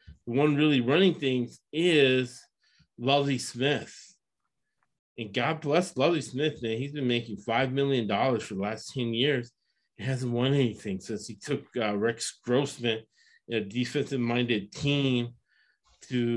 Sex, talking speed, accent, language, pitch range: male, 135 wpm, American, English, 115-135 Hz